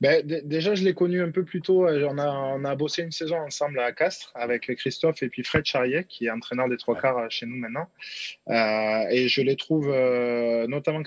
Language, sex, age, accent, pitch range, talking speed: French, male, 20-39, French, 125-150 Hz, 230 wpm